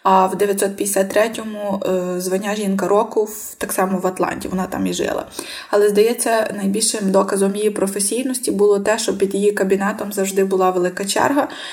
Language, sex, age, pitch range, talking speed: Ukrainian, female, 20-39, 190-215 Hz, 155 wpm